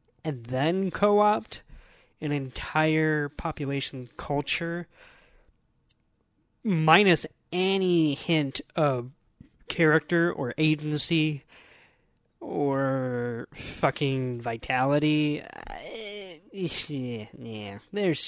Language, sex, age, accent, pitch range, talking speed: English, male, 20-39, American, 130-170 Hz, 60 wpm